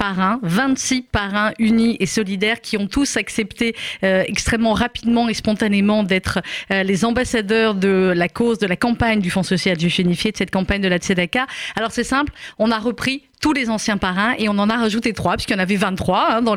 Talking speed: 205 wpm